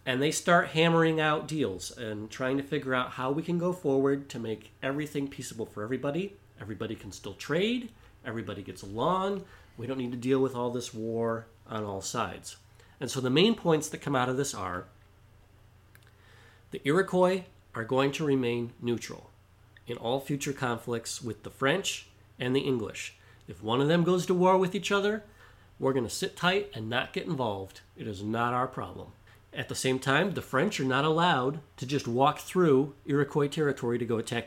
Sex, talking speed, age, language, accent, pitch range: male, 195 wpm, 40-59, English, American, 110-140 Hz